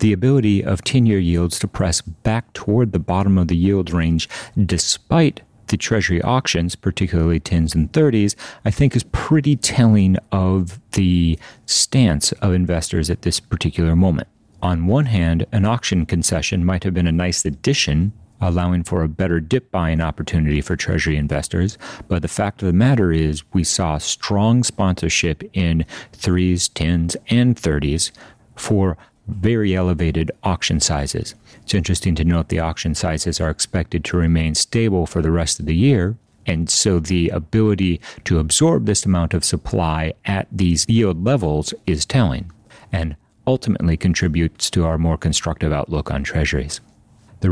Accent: American